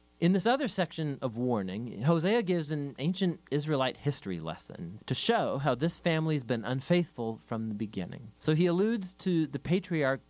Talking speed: 175 wpm